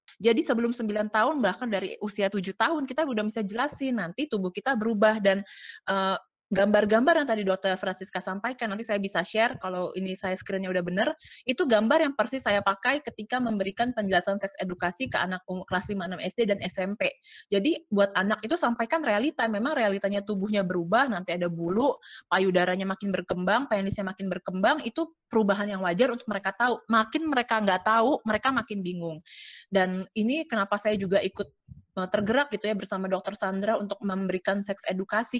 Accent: native